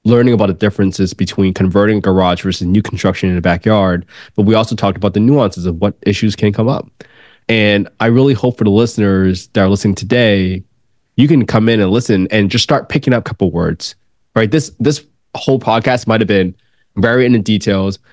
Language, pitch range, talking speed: English, 95-125 Hz, 210 wpm